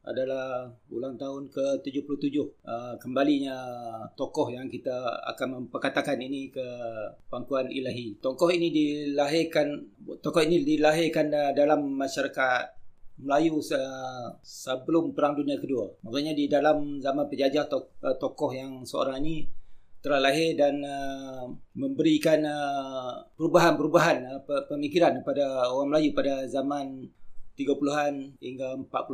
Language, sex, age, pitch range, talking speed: Malay, male, 40-59, 130-150 Hz, 100 wpm